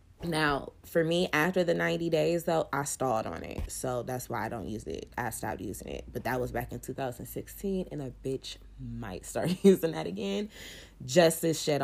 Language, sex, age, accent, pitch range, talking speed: English, female, 20-39, American, 130-155 Hz, 230 wpm